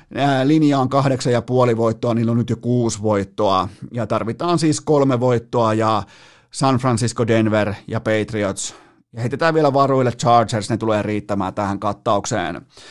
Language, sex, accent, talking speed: Finnish, male, native, 155 wpm